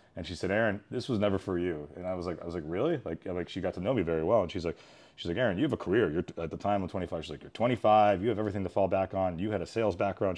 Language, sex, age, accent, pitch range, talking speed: English, male, 30-49, American, 90-110 Hz, 340 wpm